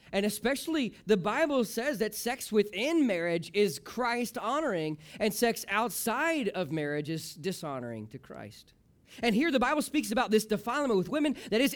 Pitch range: 195-250 Hz